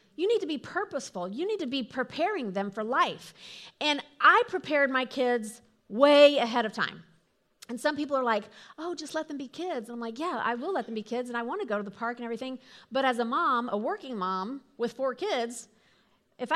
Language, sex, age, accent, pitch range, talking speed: English, female, 40-59, American, 230-325 Hz, 230 wpm